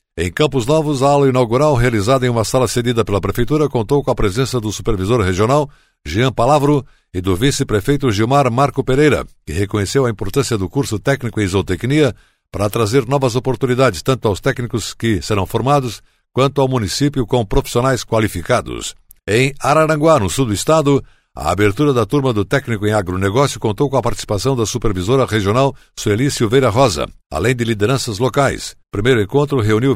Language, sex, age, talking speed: Portuguese, male, 60-79, 170 wpm